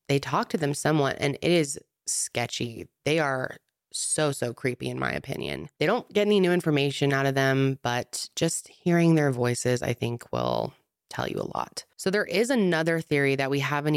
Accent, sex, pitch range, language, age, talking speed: American, female, 120-155 Hz, English, 20-39, 200 wpm